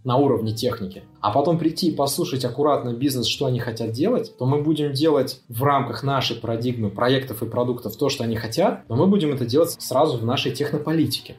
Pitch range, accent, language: 120-155 Hz, native, Russian